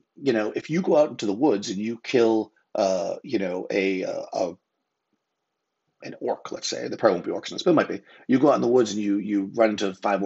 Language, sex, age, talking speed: English, male, 30-49, 265 wpm